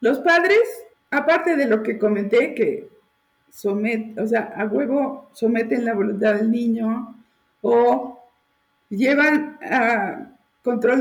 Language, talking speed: Spanish, 120 wpm